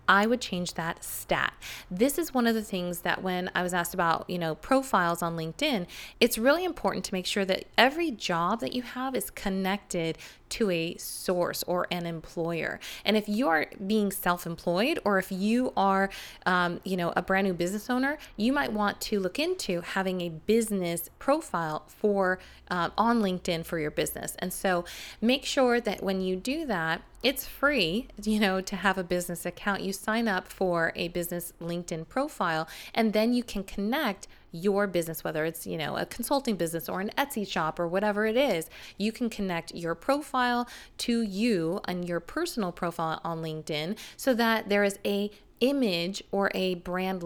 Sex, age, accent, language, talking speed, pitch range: female, 20-39, American, English, 185 wpm, 170-225 Hz